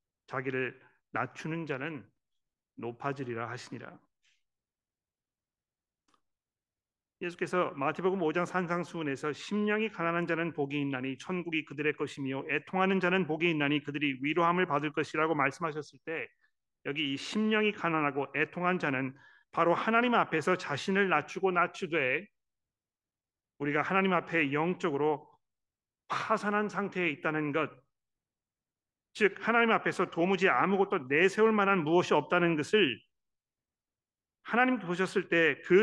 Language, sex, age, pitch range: Korean, male, 40-59, 145-185 Hz